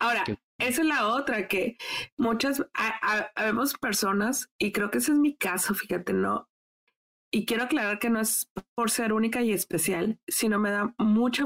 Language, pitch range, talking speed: Spanish, 205-250 Hz, 190 wpm